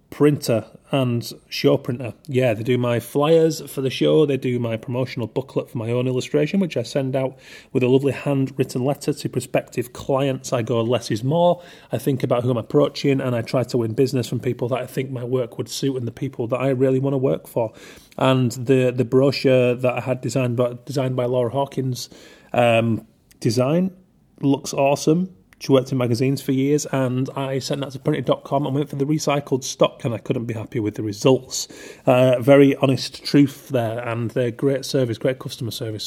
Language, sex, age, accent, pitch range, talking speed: English, male, 30-49, British, 120-140 Hz, 205 wpm